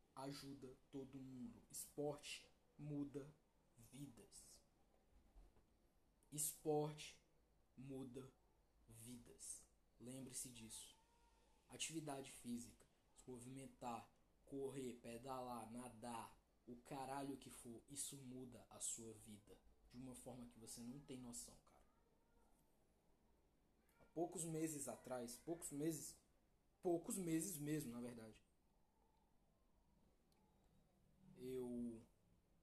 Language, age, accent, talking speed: Portuguese, 20-39, Brazilian, 90 wpm